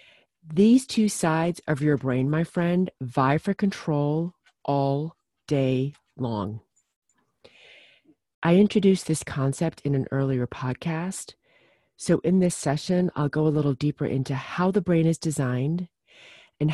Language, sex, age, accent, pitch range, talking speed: English, female, 40-59, American, 140-180 Hz, 135 wpm